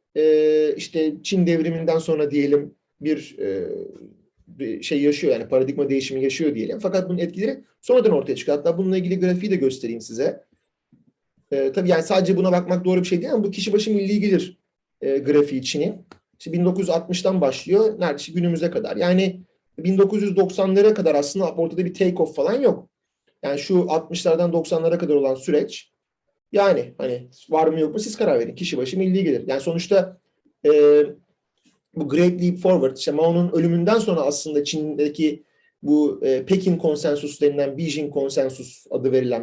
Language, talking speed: Turkish, 155 wpm